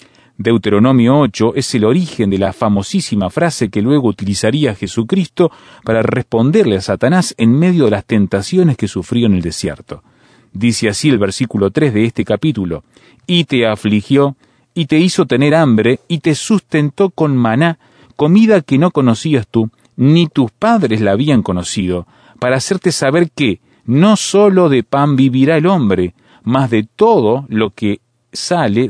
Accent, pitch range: Argentinian, 110-160 Hz